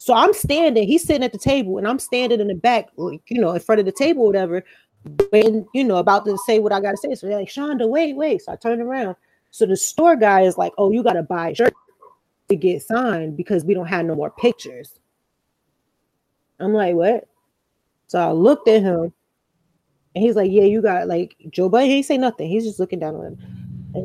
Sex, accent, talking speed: female, American, 230 wpm